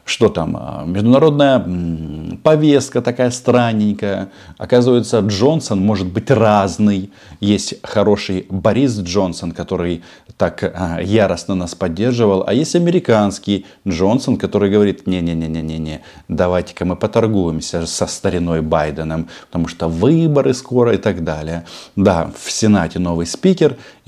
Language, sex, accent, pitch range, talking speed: Russian, male, native, 90-125 Hz, 120 wpm